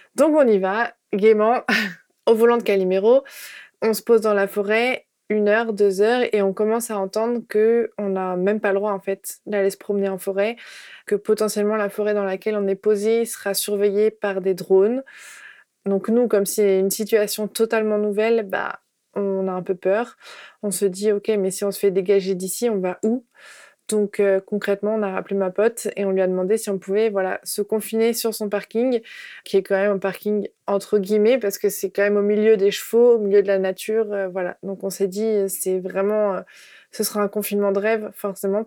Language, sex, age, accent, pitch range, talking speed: French, female, 20-39, French, 195-220 Hz, 215 wpm